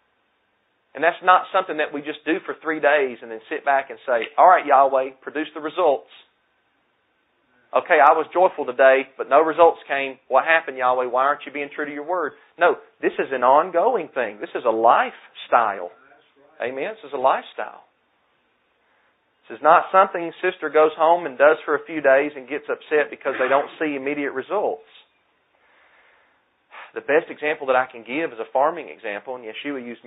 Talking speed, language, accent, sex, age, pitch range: 190 wpm, English, American, male, 40-59, 130-170 Hz